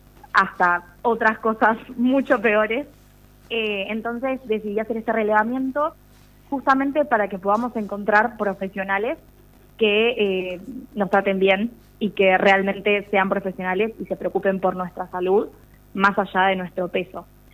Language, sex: Spanish, female